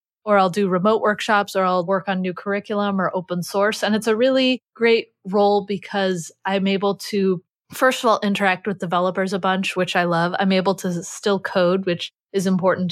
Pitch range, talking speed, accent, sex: 180-210 Hz, 200 wpm, American, female